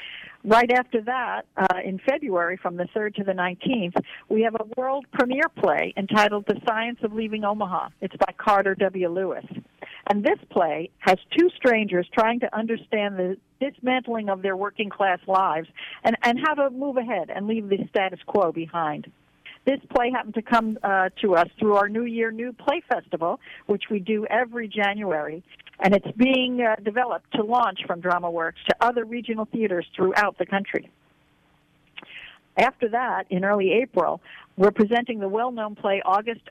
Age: 50-69